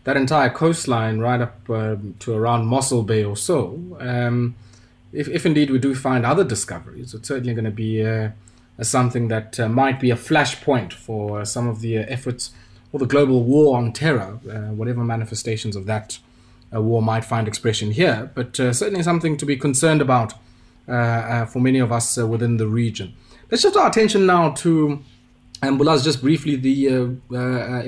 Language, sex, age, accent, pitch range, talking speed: English, male, 20-39, South African, 115-135 Hz, 195 wpm